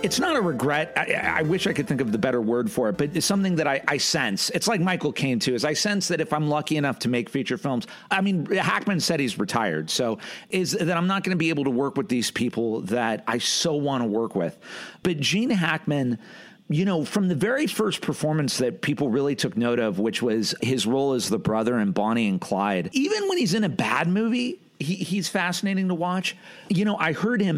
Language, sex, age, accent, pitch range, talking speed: English, male, 40-59, American, 125-180 Hz, 240 wpm